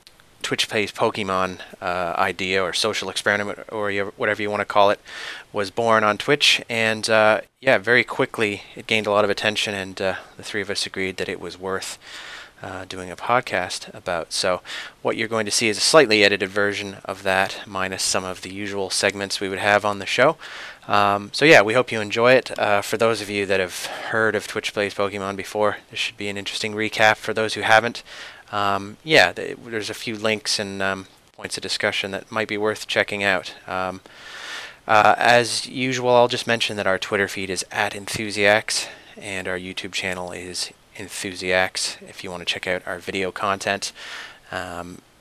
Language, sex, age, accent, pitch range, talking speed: English, male, 30-49, American, 95-110 Hz, 200 wpm